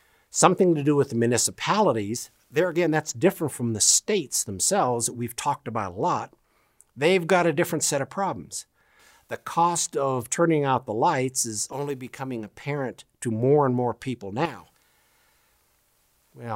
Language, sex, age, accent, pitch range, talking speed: English, male, 60-79, American, 110-140 Hz, 165 wpm